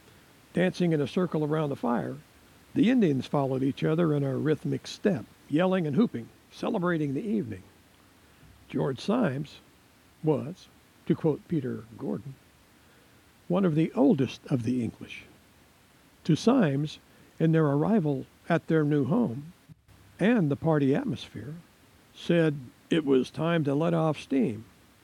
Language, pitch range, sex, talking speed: English, 140-180 Hz, male, 135 wpm